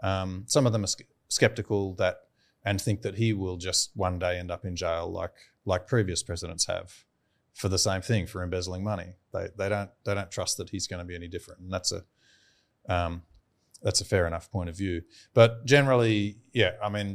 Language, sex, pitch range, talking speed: English, male, 90-105 Hz, 210 wpm